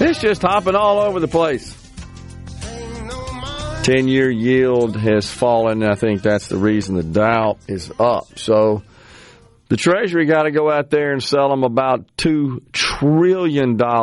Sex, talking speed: male, 145 wpm